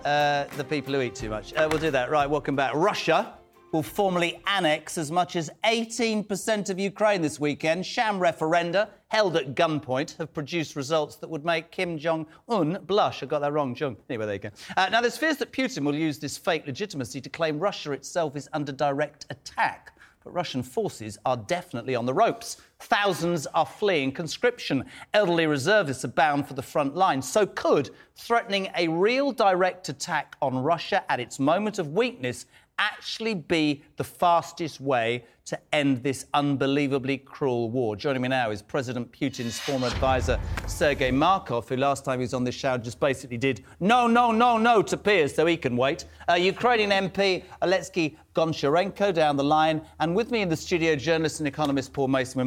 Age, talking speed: 40-59, 185 wpm